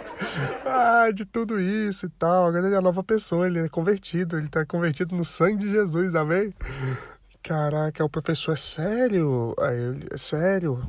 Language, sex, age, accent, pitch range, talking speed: Portuguese, male, 20-39, Brazilian, 130-170 Hz, 160 wpm